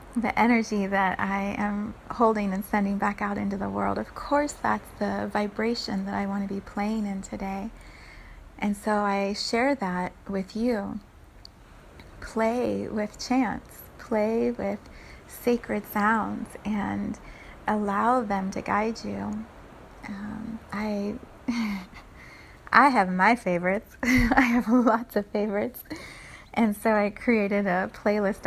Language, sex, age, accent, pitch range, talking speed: English, female, 30-49, American, 200-230 Hz, 135 wpm